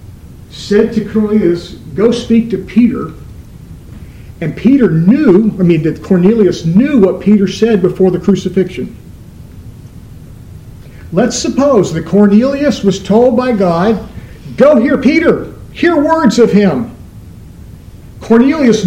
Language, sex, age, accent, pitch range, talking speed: English, male, 50-69, American, 185-235 Hz, 120 wpm